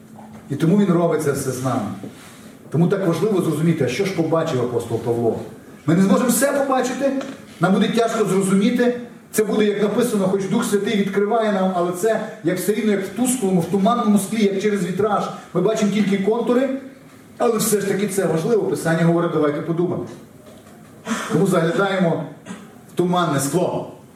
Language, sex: Ukrainian, male